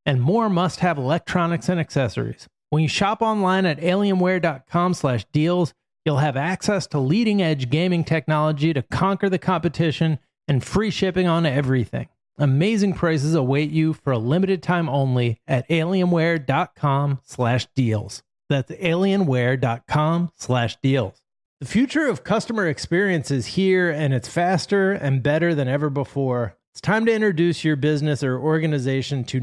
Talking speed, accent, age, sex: 145 wpm, American, 30-49, male